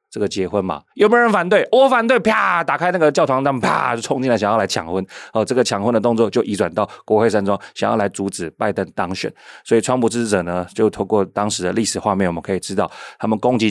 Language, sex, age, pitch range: Chinese, male, 30-49, 95-125 Hz